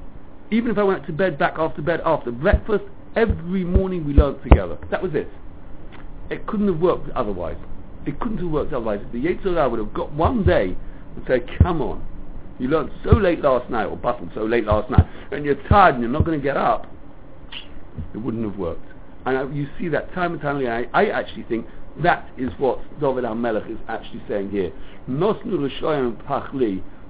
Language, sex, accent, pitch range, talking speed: English, male, British, 100-155 Hz, 205 wpm